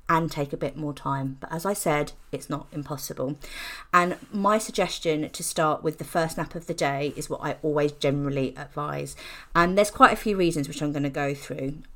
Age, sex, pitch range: 30-49, female, 145-175 Hz